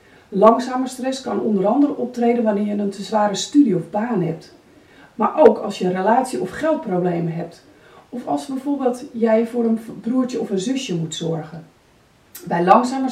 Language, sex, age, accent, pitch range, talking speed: Dutch, female, 40-59, Dutch, 190-265 Hz, 175 wpm